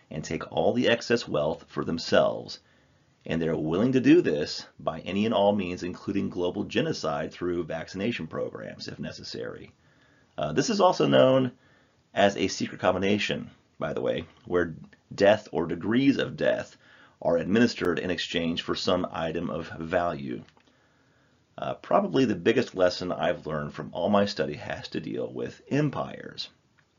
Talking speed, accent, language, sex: 155 wpm, American, English, male